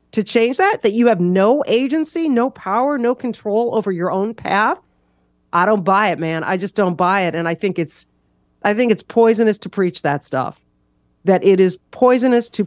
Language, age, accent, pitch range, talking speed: English, 40-59, American, 160-230 Hz, 205 wpm